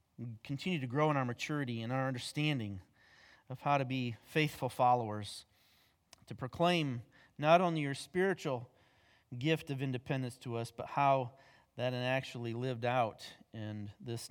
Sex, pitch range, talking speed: male, 120-175 Hz, 145 wpm